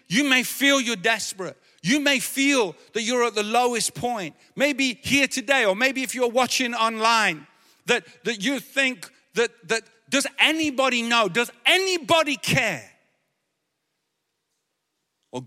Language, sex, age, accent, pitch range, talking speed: English, male, 50-69, British, 160-245 Hz, 140 wpm